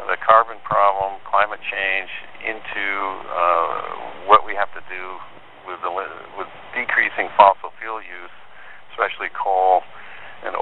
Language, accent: English, American